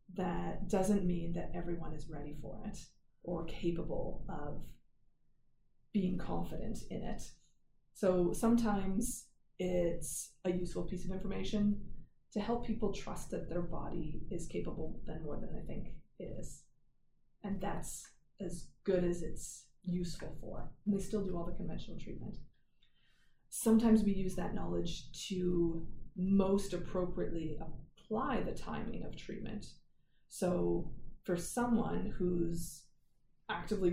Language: English